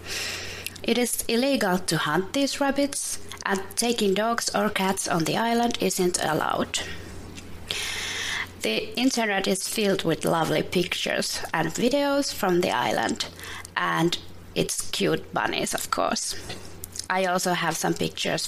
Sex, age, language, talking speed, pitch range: female, 20-39, English, 130 wpm, 170-225 Hz